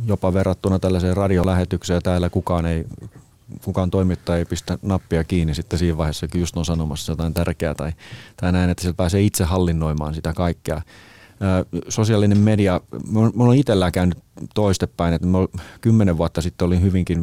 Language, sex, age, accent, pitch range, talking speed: Finnish, male, 30-49, native, 80-95 Hz, 155 wpm